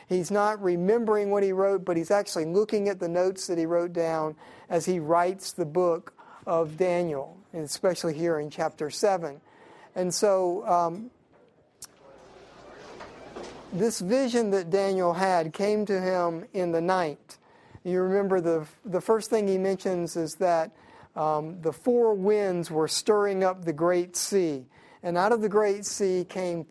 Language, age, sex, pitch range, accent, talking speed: English, 50-69, male, 165-200 Hz, American, 160 wpm